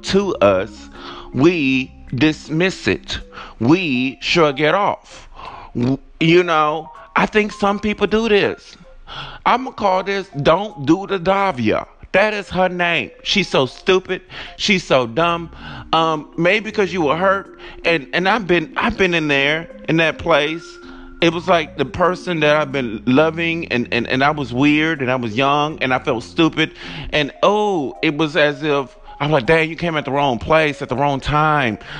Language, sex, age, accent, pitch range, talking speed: English, male, 30-49, American, 140-180 Hz, 175 wpm